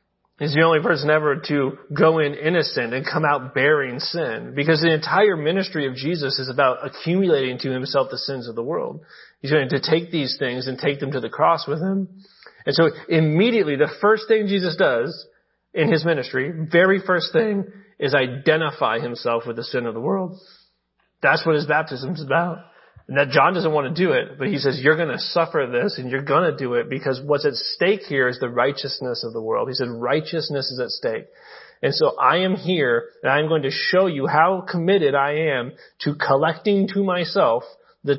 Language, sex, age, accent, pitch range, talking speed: English, male, 30-49, American, 135-185 Hz, 210 wpm